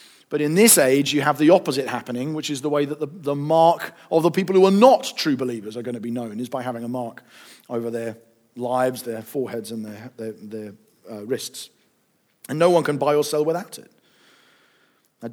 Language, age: English, 40-59